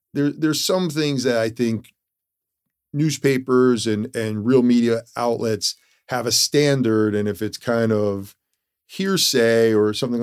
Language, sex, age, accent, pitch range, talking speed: English, male, 40-59, American, 105-120 Hz, 135 wpm